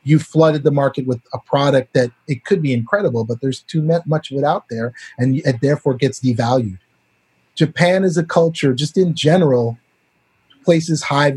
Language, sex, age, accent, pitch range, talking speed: English, male, 30-49, American, 125-150 Hz, 180 wpm